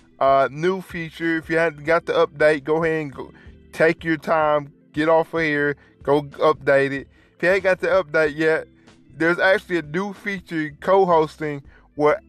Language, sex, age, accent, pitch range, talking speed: English, male, 20-39, American, 140-170 Hz, 185 wpm